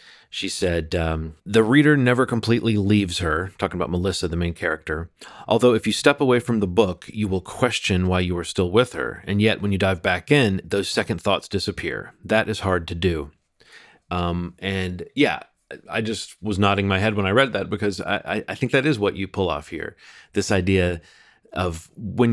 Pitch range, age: 90-110 Hz, 30-49